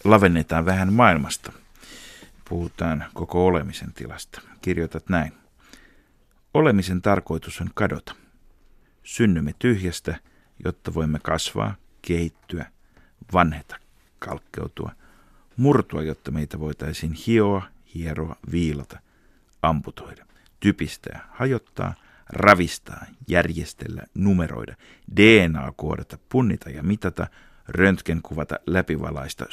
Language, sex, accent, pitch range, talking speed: Finnish, male, native, 80-95 Hz, 85 wpm